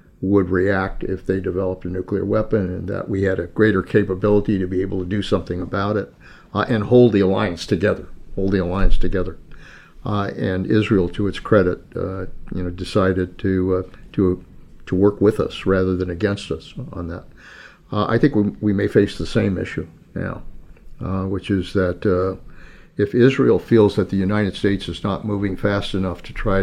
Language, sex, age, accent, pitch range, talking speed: English, male, 50-69, American, 95-105 Hz, 195 wpm